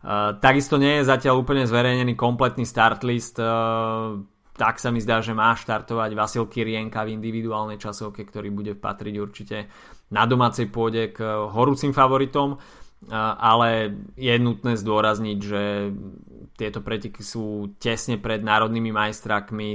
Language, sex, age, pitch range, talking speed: Slovak, male, 20-39, 105-120 Hz, 135 wpm